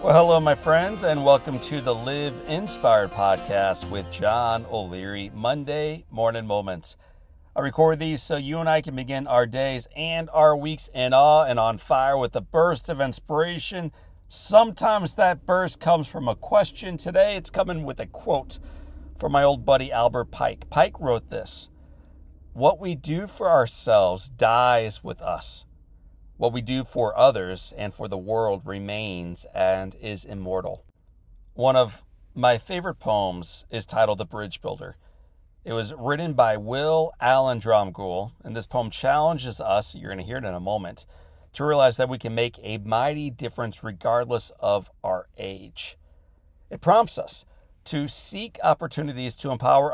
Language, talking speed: English, 160 wpm